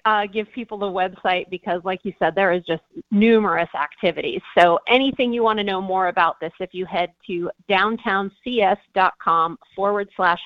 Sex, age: female, 30-49